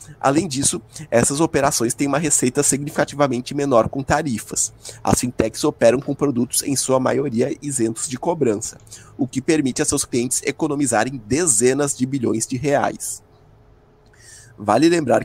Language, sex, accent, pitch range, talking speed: Portuguese, male, Brazilian, 115-140 Hz, 140 wpm